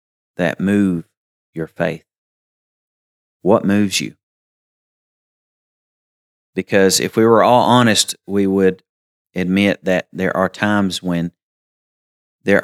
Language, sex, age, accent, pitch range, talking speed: English, male, 30-49, American, 85-100 Hz, 105 wpm